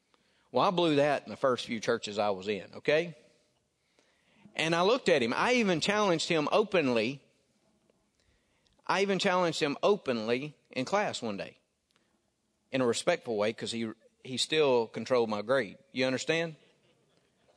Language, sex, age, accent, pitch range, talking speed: English, male, 40-59, American, 155-235 Hz, 155 wpm